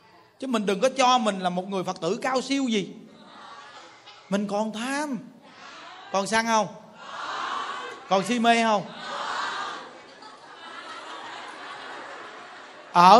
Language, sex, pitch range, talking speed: Vietnamese, male, 205-270 Hz, 115 wpm